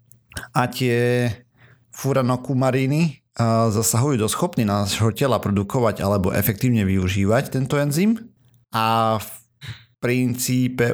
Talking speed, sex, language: 100 wpm, male, Slovak